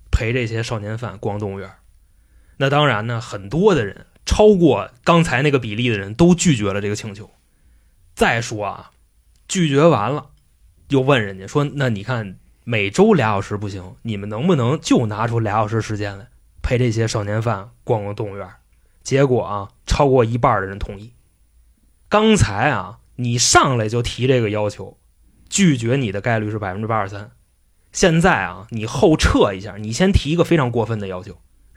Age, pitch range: 20-39, 100-125 Hz